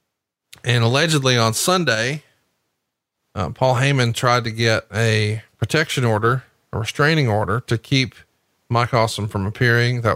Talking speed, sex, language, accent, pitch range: 135 wpm, male, English, American, 110-125 Hz